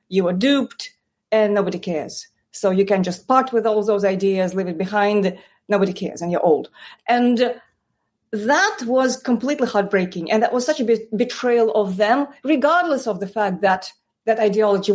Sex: female